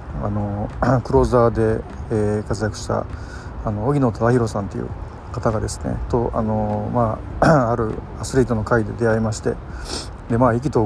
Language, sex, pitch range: Japanese, male, 100-120 Hz